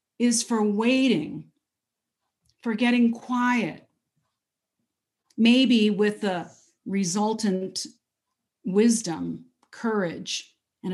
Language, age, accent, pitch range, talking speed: English, 40-59, American, 180-235 Hz, 70 wpm